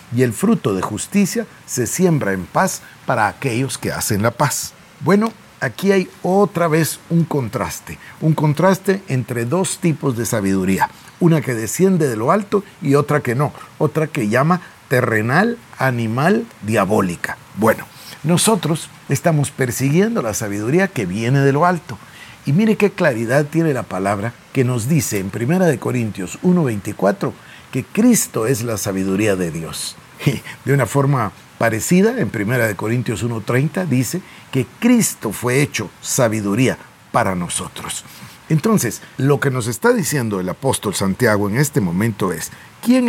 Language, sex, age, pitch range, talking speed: Spanish, male, 50-69, 115-175 Hz, 155 wpm